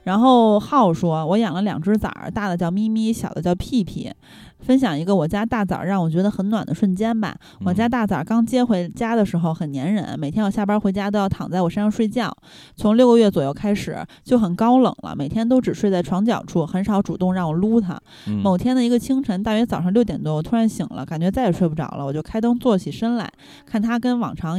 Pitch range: 175-225 Hz